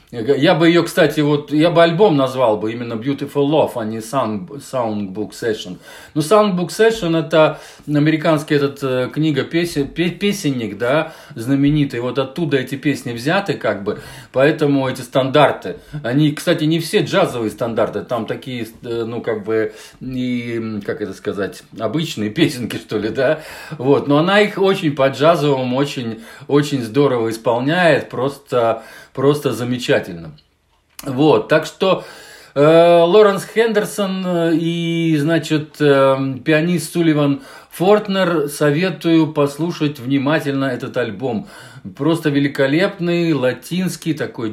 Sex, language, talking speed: male, Russian, 125 wpm